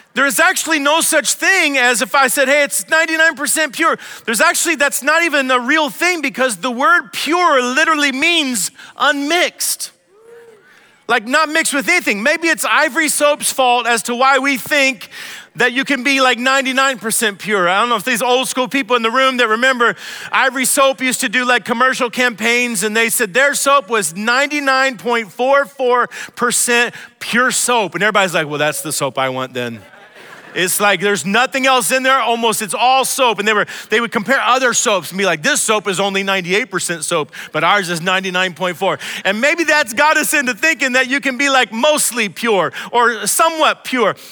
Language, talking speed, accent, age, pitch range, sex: English, 190 wpm, American, 40-59, 225-295 Hz, male